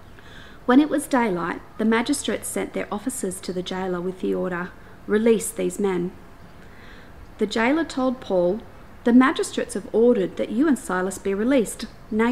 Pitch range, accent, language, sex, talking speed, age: 185-245 Hz, Australian, English, female, 160 wpm, 40-59